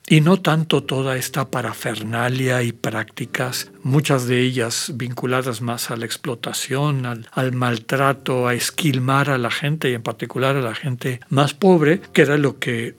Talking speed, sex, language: 165 wpm, male, Spanish